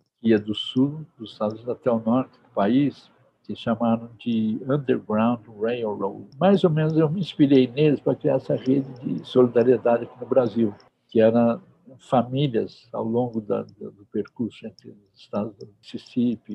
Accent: Brazilian